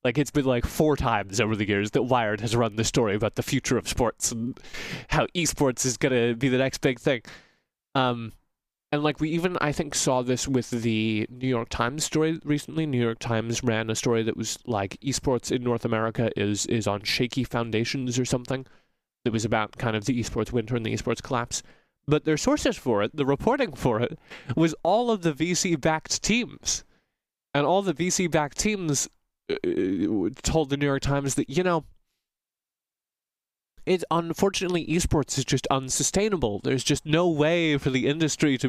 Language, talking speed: English, 185 wpm